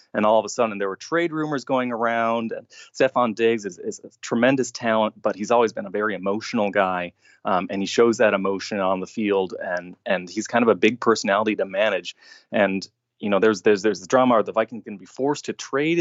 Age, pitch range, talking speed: 20-39, 105-120 Hz, 235 wpm